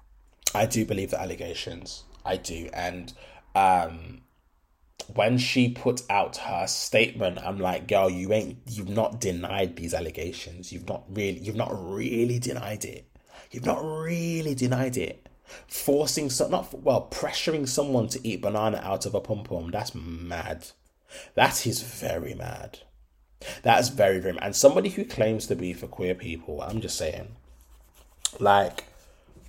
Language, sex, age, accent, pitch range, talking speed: English, male, 20-39, British, 85-120 Hz, 155 wpm